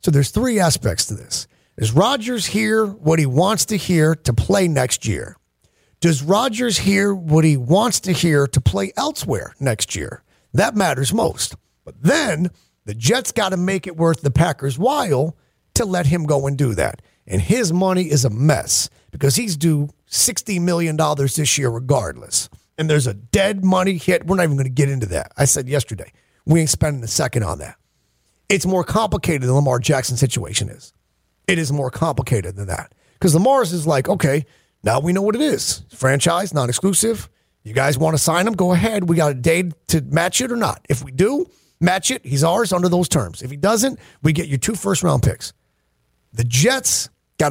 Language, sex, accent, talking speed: English, male, American, 200 wpm